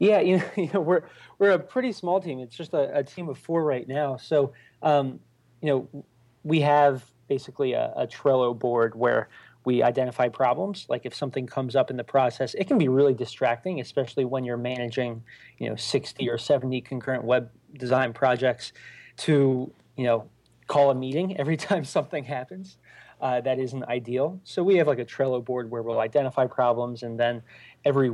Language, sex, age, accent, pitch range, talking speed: English, male, 30-49, American, 120-145 Hz, 190 wpm